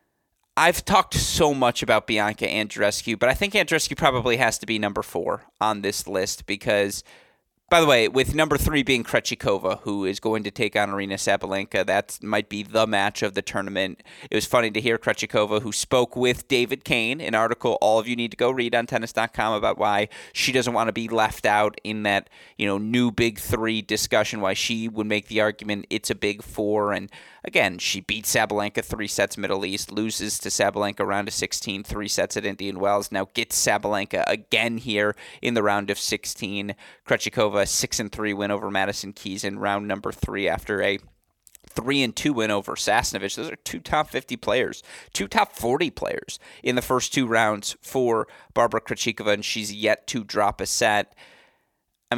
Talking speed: 195 wpm